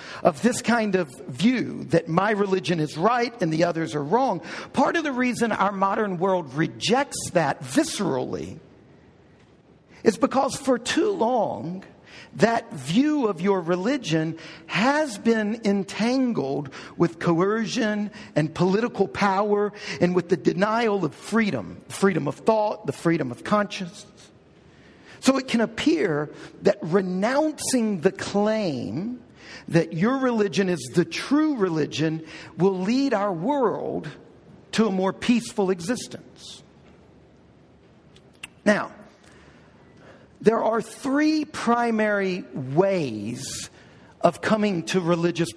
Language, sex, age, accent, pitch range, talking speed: English, male, 50-69, American, 165-230 Hz, 120 wpm